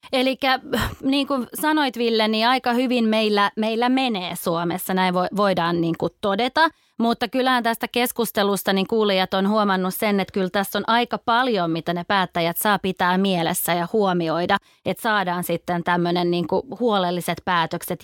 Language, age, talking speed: Finnish, 20-39, 160 wpm